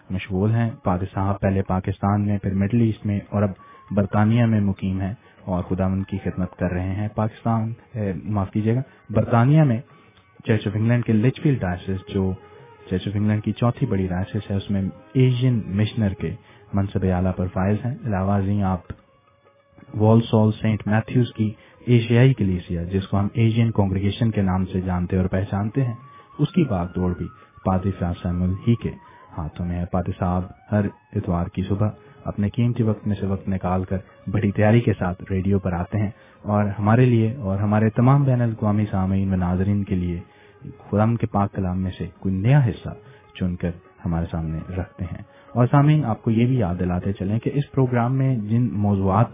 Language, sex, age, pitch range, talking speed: English, male, 30-49, 95-115 Hz, 170 wpm